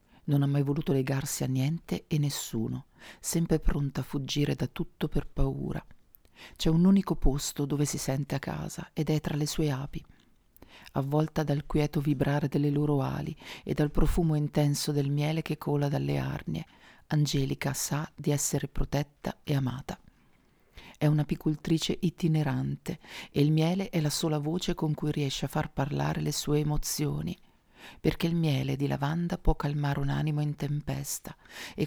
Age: 40-59